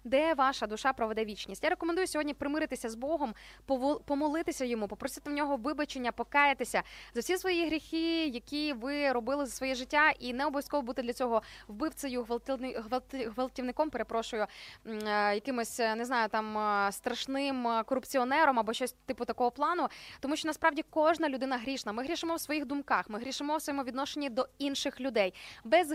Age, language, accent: 20-39, Ukrainian, native